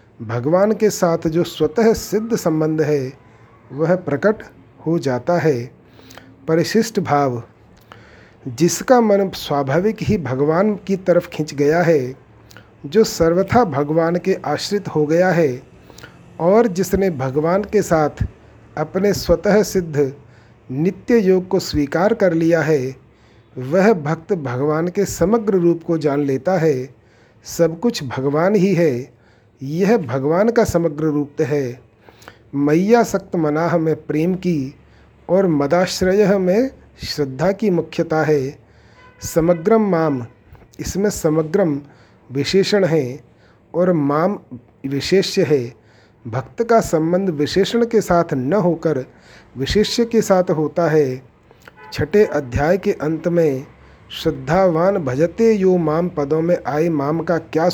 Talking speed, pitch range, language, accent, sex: 125 wpm, 140-190 Hz, Hindi, native, male